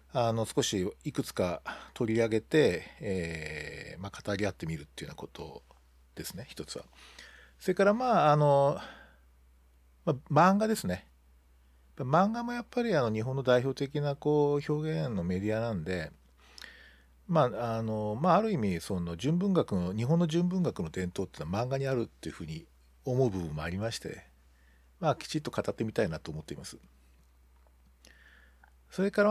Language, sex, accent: Japanese, male, native